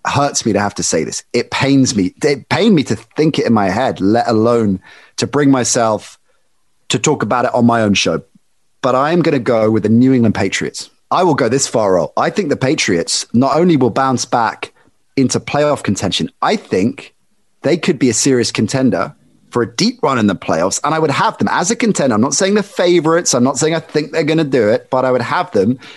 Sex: male